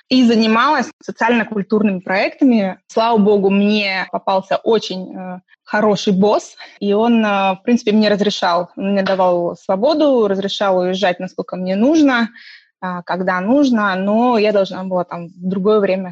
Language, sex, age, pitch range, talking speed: Russian, female, 20-39, 185-235 Hz, 140 wpm